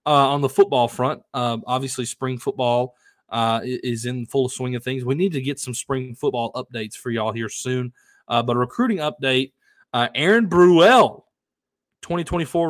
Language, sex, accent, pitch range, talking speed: English, male, American, 115-150 Hz, 175 wpm